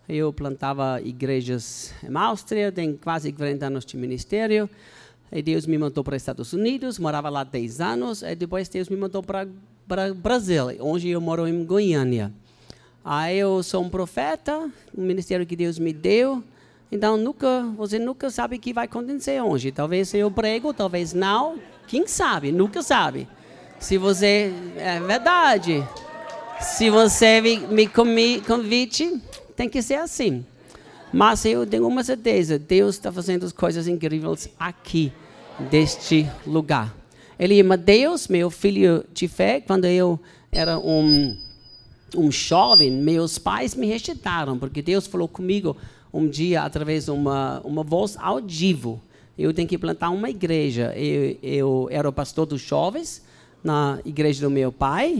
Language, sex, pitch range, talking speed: Portuguese, male, 145-215 Hz, 150 wpm